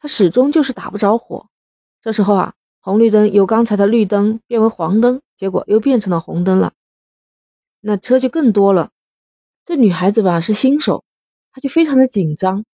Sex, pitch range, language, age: female, 180-235 Hz, Chinese, 30-49